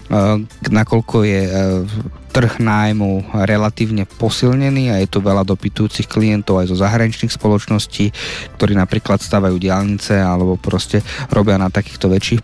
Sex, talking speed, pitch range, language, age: male, 125 wpm, 95-115 Hz, Slovak, 20-39